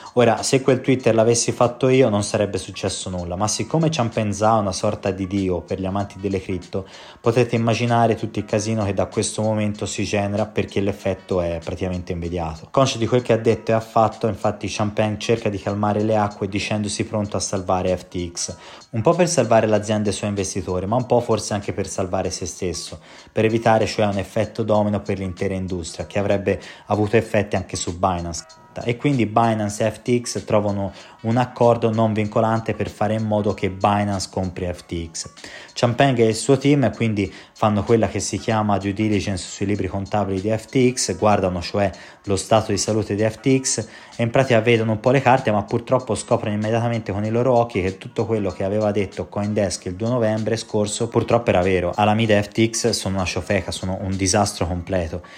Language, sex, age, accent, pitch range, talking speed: Italian, male, 20-39, native, 95-115 Hz, 195 wpm